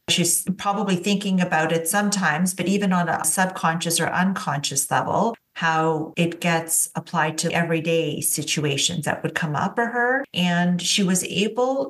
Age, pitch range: 40-59, 170-205 Hz